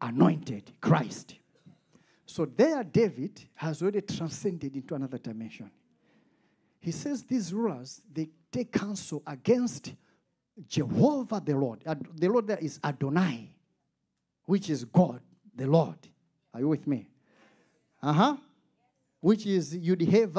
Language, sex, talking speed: English, male, 120 wpm